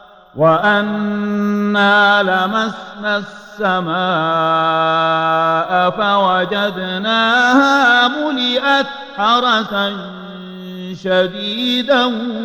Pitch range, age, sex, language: 185-245 Hz, 50-69, male, Arabic